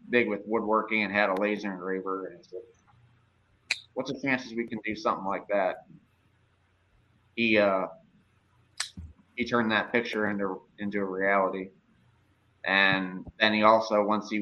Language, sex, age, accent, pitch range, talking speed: English, male, 30-49, American, 100-115 Hz, 135 wpm